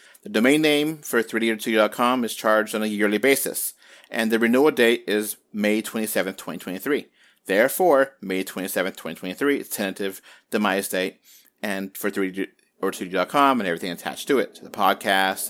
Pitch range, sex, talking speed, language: 105-140 Hz, male, 165 wpm, English